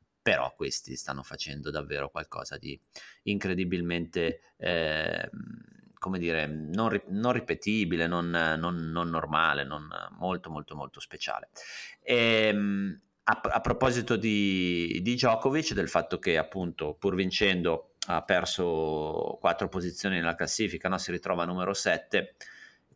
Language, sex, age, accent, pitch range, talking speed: Italian, male, 30-49, native, 80-100 Hz, 110 wpm